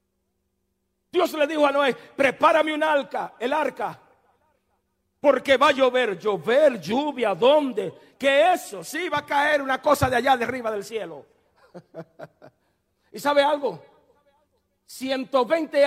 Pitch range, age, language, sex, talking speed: 215-290 Hz, 50-69, Spanish, male, 130 wpm